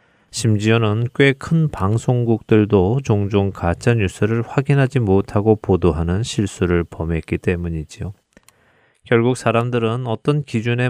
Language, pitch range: Korean, 90-120 Hz